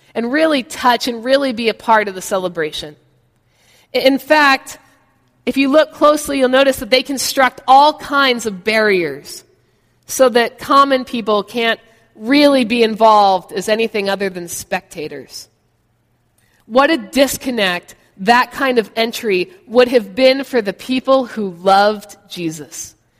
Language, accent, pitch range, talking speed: English, American, 205-285 Hz, 140 wpm